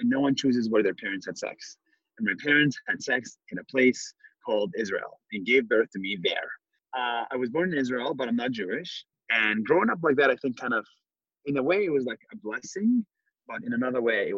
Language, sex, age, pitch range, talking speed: English, male, 30-49, 100-145 Hz, 240 wpm